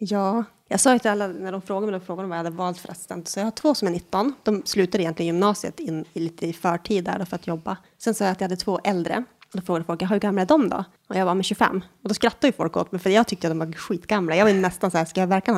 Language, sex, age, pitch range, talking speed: Swedish, female, 20-39, 180-215 Hz, 310 wpm